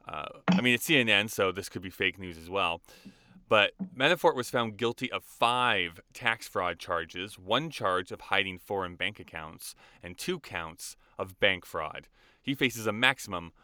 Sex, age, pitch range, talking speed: male, 20-39, 90-125 Hz, 175 wpm